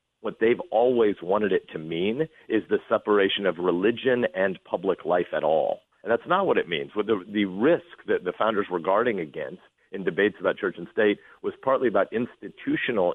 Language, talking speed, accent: English, 185 wpm, American